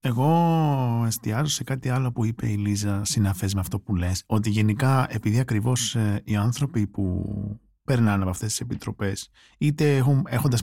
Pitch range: 100-125 Hz